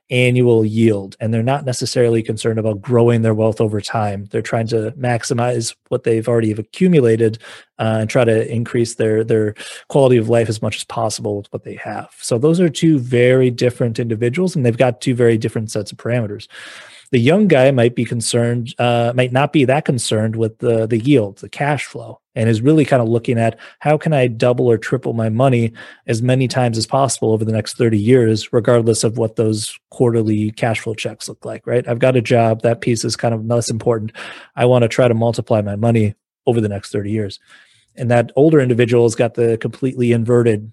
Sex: male